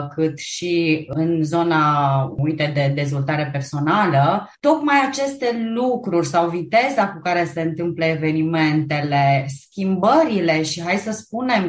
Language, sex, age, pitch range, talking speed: Romanian, female, 20-39, 165-220 Hz, 115 wpm